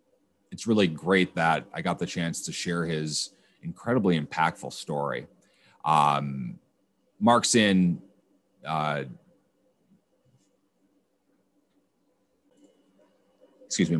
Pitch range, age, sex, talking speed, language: 75-90 Hz, 30-49, male, 65 wpm, English